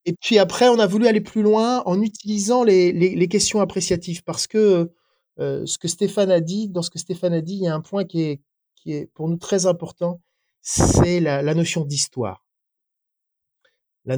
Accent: French